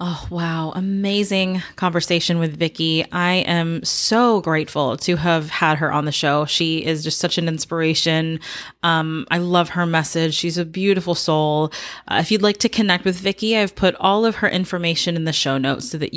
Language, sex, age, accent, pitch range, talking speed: English, female, 20-39, American, 160-195 Hz, 195 wpm